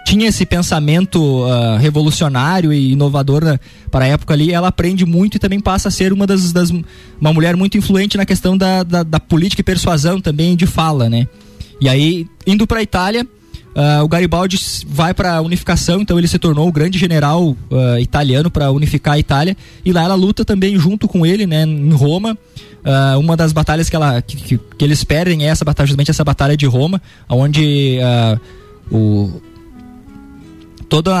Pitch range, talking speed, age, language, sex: 135-185 Hz, 190 wpm, 20-39, Portuguese, male